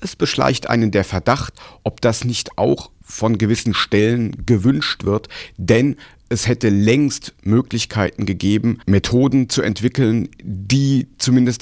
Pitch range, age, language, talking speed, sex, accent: 100-125 Hz, 50-69, German, 130 wpm, male, German